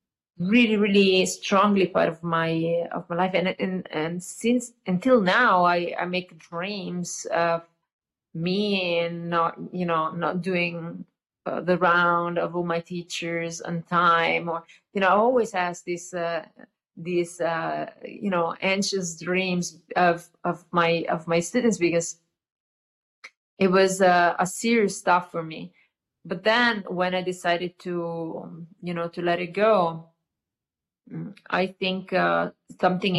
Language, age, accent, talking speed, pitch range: English, 30-49, Italian, 150 wpm, 170-190 Hz